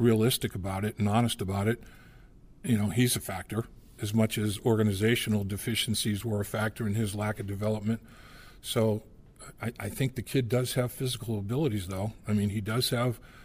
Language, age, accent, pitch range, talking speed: English, 50-69, American, 105-125 Hz, 185 wpm